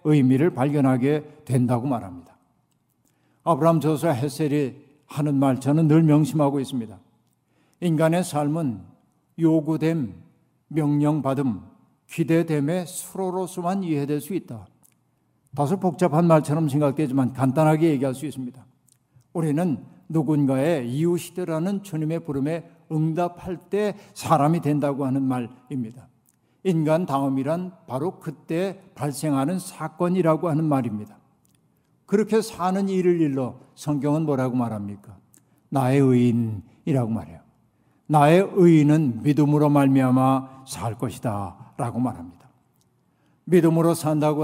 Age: 60-79